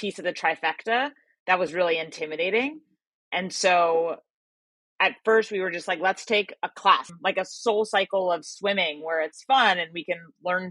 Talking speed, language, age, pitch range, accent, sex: 185 wpm, English, 30-49, 170-220 Hz, American, female